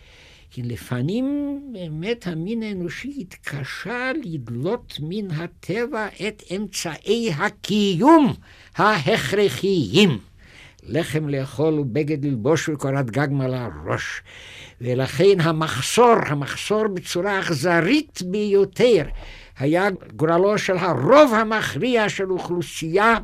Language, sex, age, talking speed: Hebrew, male, 60-79, 90 wpm